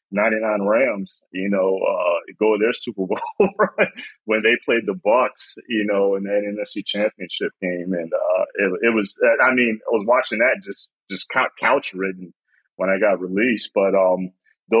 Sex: male